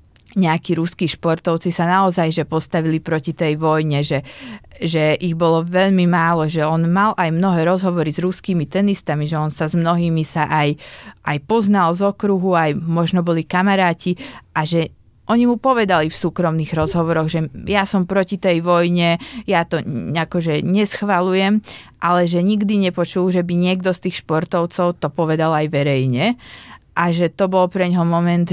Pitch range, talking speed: 160-190 Hz, 165 wpm